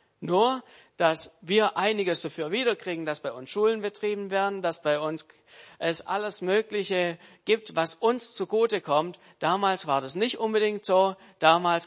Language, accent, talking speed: German, German, 145 wpm